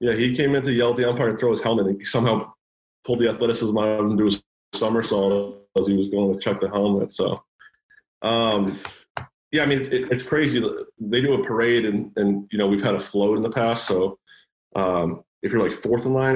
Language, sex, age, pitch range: English, male, 20-39, 100-120 Hz